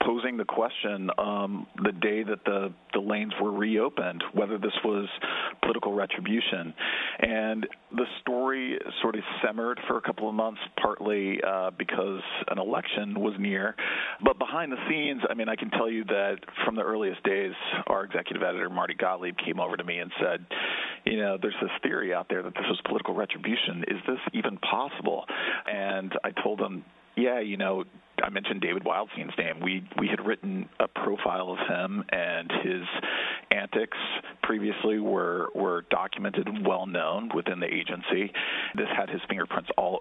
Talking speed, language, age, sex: 170 wpm, English, 40-59, male